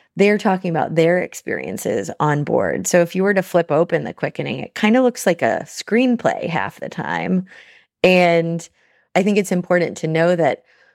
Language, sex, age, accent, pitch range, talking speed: English, female, 30-49, American, 160-195 Hz, 185 wpm